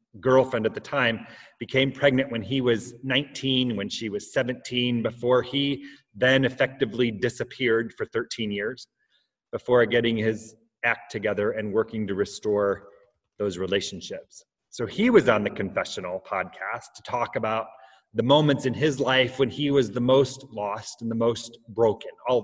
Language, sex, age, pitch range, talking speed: English, male, 30-49, 110-140 Hz, 160 wpm